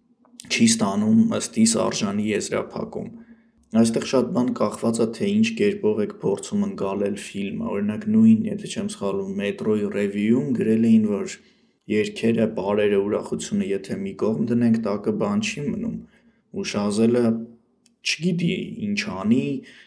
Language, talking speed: English, 125 wpm